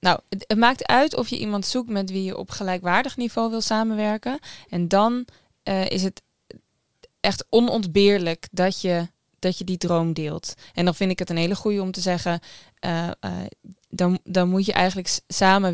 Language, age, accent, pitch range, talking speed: Dutch, 20-39, Dutch, 175-210 Hz, 185 wpm